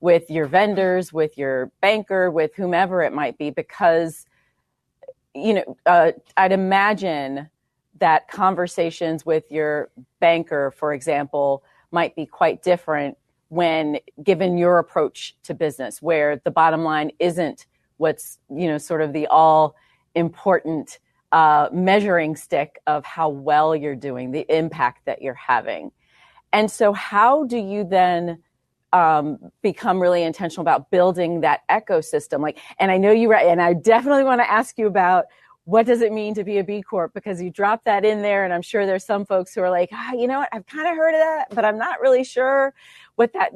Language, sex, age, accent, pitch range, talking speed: English, female, 40-59, American, 160-215 Hz, 175 wpm